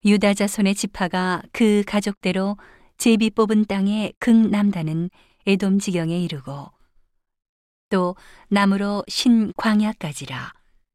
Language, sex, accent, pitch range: Korean, female, native, 175-205 Hz